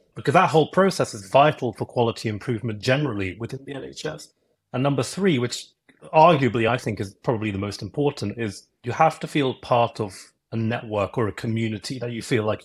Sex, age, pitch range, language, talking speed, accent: male, 30-49, 110-140 Hz, English, 195 wpm, British